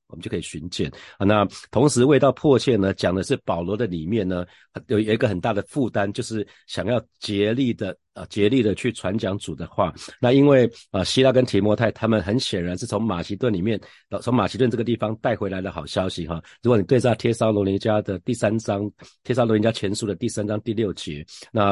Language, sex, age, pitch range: Chinese, male, 50-69, 95-120 Hz